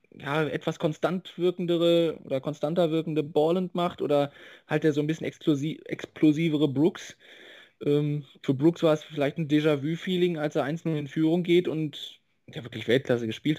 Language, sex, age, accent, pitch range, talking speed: German, male, 20-39, German, 140-165 Hz, 165 wpm